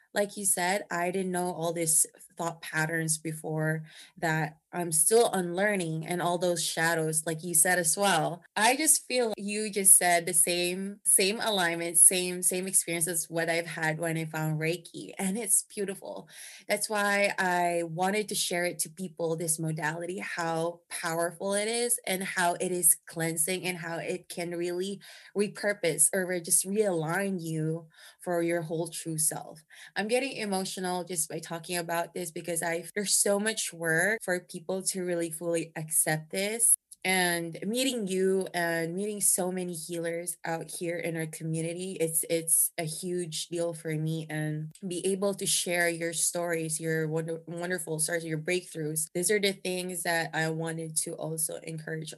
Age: 20-39